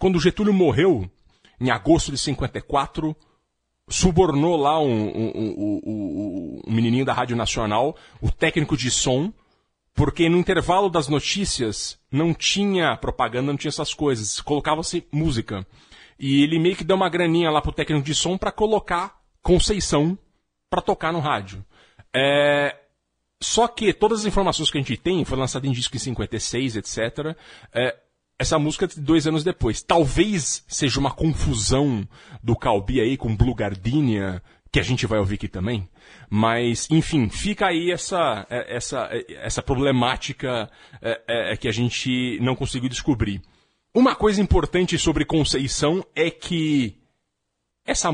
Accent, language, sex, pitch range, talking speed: Brazilian, Portuguese, male, 115-165 Hz, 150 wpm